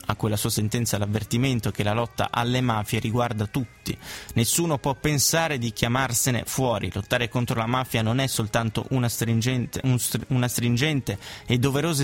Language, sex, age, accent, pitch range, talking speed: Italian, male, 20-39, native, 110-130 Hz, 150 wpm